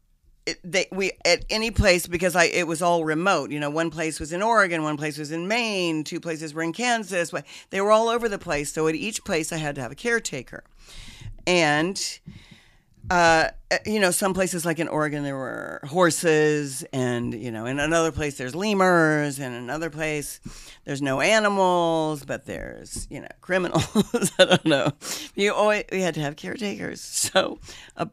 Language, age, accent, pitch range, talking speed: English, 50-69, American, 135-175 Hz, 190 wpm